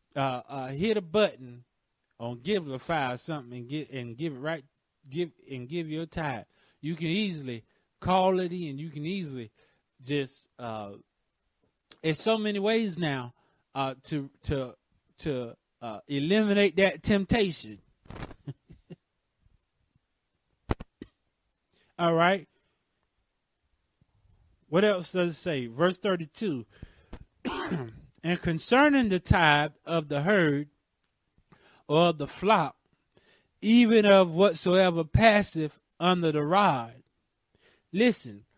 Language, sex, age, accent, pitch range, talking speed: English, male, 30-49, American, 130-185 Hz, 115 wpm